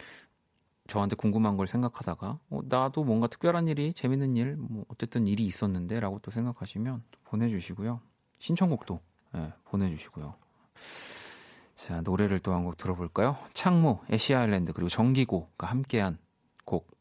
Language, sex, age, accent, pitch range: Korean, male, 30-49, native, 95-130 Hz